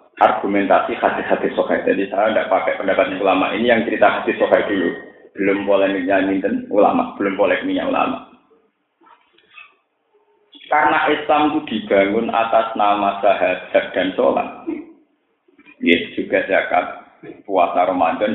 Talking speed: 125 wpm